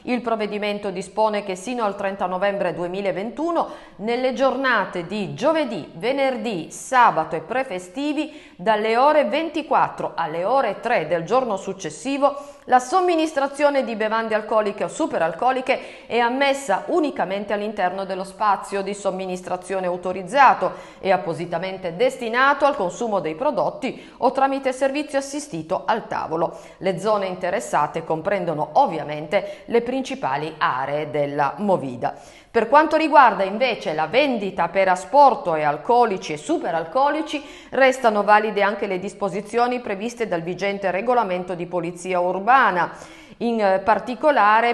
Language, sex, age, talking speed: Italian, female, 40-59, 120 wpm